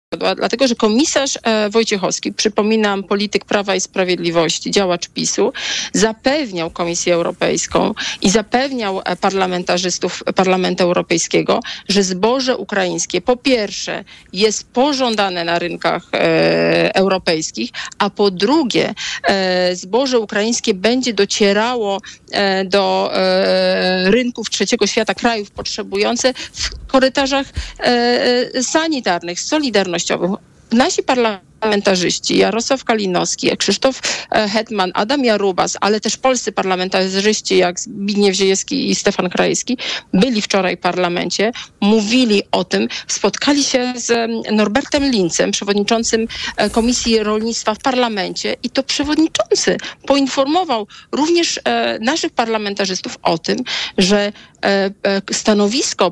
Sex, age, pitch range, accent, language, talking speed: female, 40-59, 190-245 Hz, native, Polish, 100 wpm